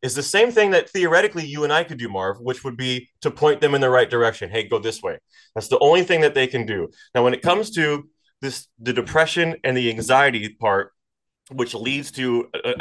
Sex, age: male, 30-49